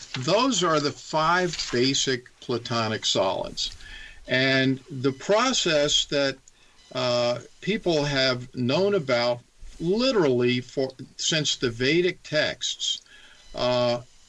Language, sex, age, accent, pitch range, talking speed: English, male, 50-69, American, 125-175 Hz, 95 wpm